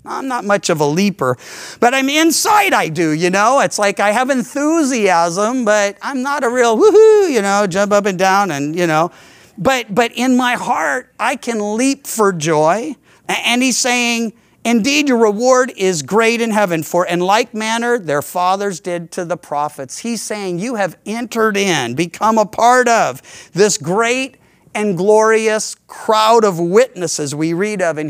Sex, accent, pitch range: male, American, 175-235 Hz